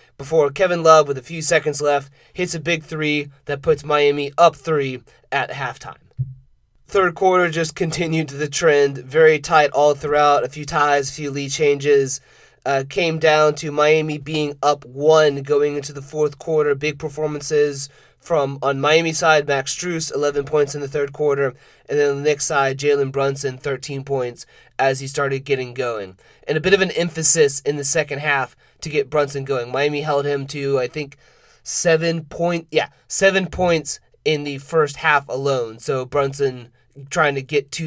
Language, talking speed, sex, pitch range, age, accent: English, 180 wpm, male, 140-160 Hz, 30-49, American